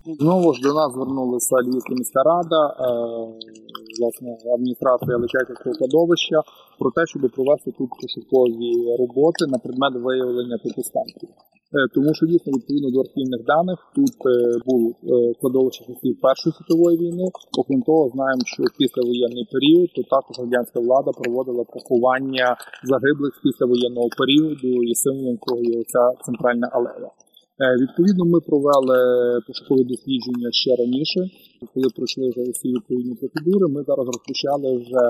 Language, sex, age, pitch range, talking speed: Ukrainian, male, 20-39, 125-150 Hz, 135 wpm